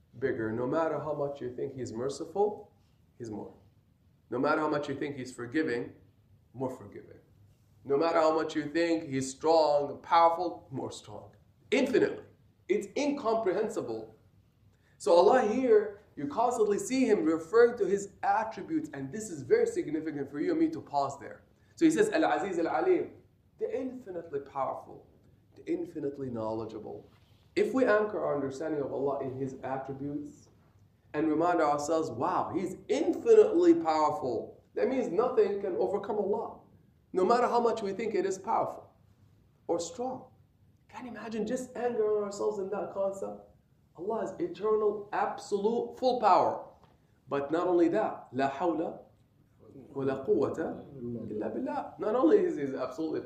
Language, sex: English, male